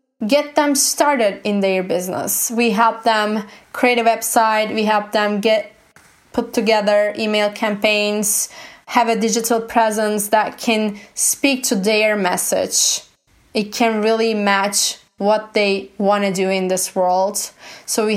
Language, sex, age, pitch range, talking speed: English, female, 20-39, 200-230 Hz, 145 wpm